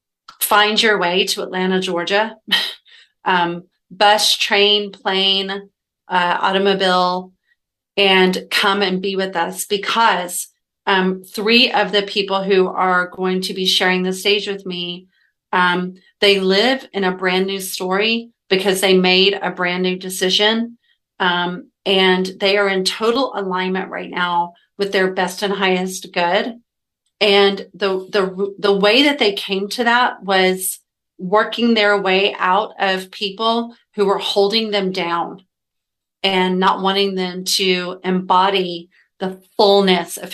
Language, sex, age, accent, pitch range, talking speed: English, female, 40-59, American, 185-200 Hz, 140 wpm